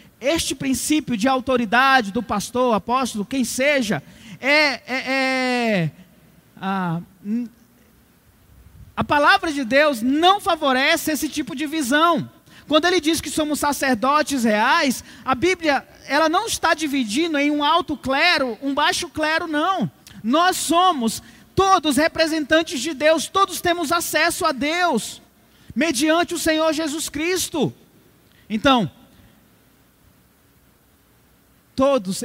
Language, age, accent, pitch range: Portuguese, 20-39, Brazilian, 210-300 Hz